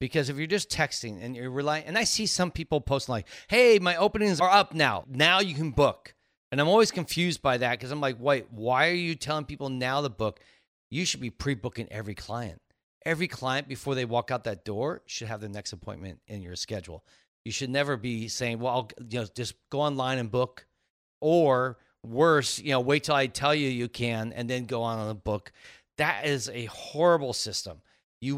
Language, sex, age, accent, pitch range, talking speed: English, male, 40-59, American, 115-150 Hz, 220 wpm